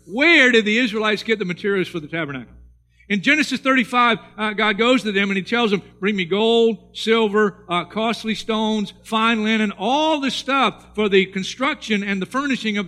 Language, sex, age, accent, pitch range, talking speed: English, male, 50-69, American, 165-235 Hz, 190 wpm